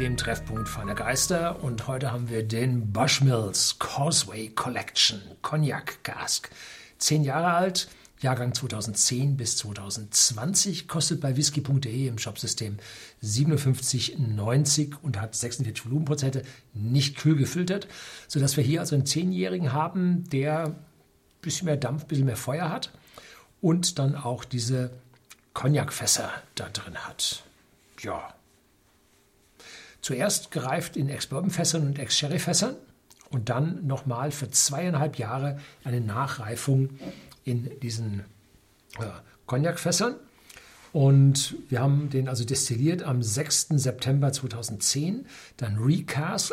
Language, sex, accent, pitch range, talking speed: German, male, German, 120-155 Hz, 115 wpm